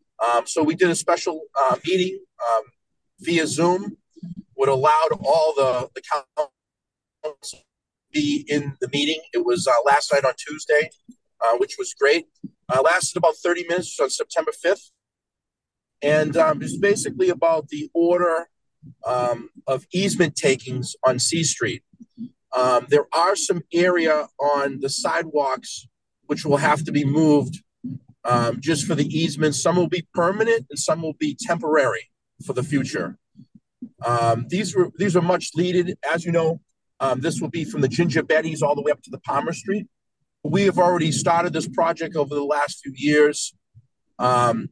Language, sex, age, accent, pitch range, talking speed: English, male, 40-59, American, 140-180 Hz, 165 wpm